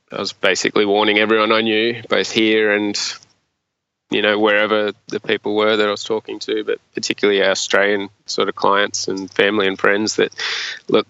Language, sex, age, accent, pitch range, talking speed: English, male, 20-39, Australian, 105-115 Hz, 185 wpm